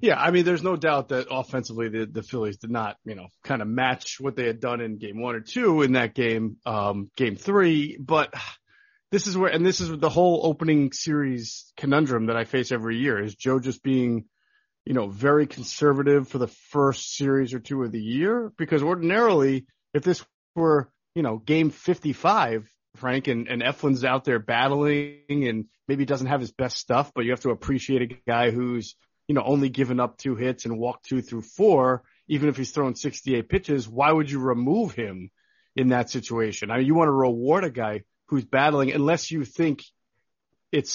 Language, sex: English, male